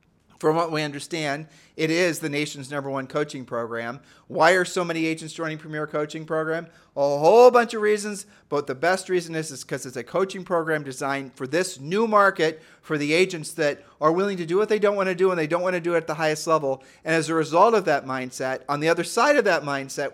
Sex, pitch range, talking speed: male, 140-175 Hz, 240 wpm